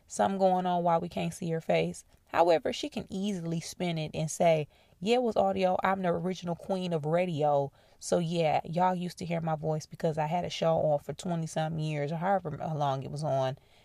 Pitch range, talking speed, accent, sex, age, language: 150-185 Hz, 220 wpm, American, female, 20-39, English